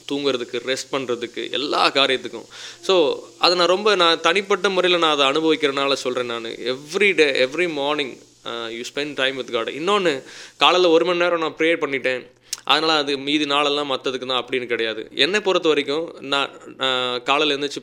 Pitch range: 130-175 Hz